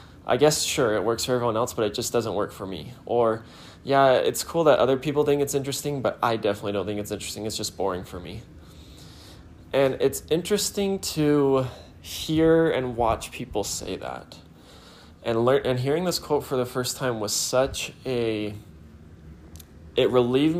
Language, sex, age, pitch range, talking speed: English, male, 20-39, 95-125 Hz, 180 wpm